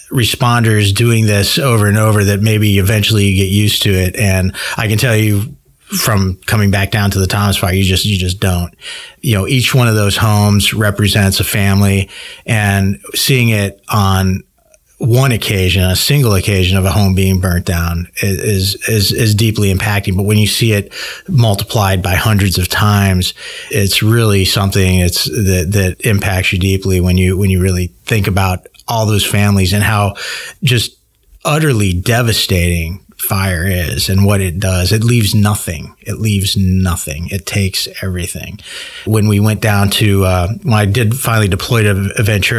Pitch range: 95-110 Hz